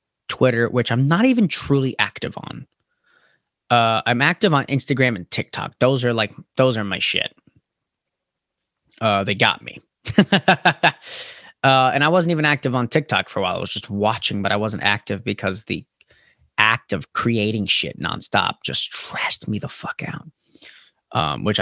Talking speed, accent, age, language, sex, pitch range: 165 wpm, American, 20-39, English, male, 105-140 Hz